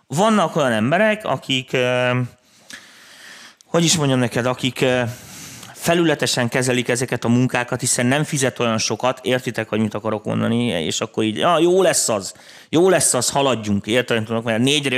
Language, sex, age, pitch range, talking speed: Hungarian, male, 30-49, 110-140 Hz, 150 wpm